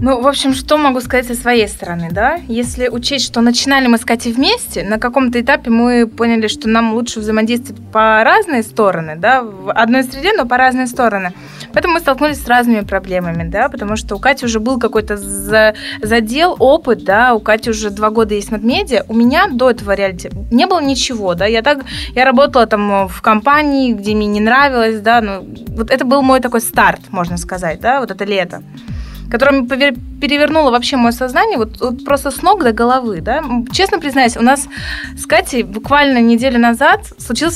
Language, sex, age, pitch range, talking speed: Russian, female, 20-39, 225-270 Hz, 190 wpm